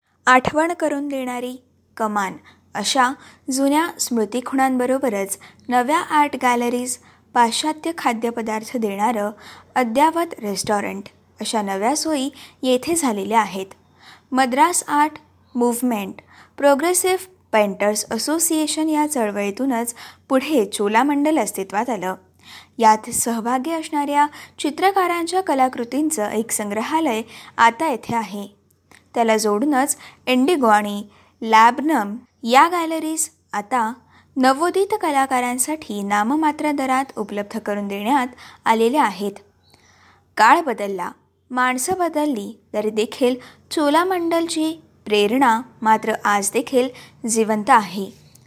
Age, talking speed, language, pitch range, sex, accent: 20-39, 95 wpm, Marathi, 220-295 Hz, female, native